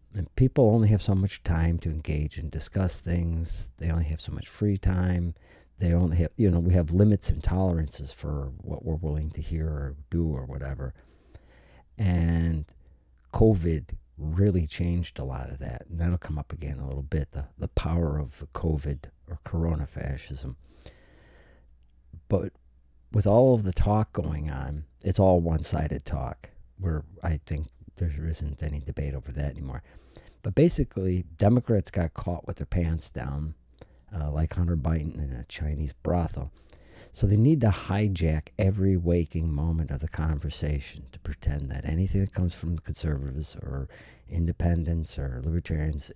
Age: 50-69